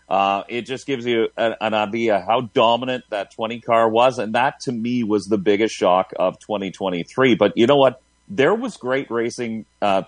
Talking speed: 190 wpm